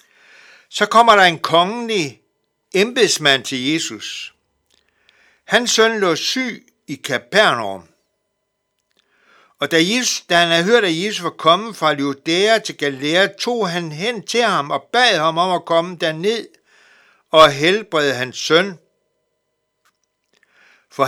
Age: 60-79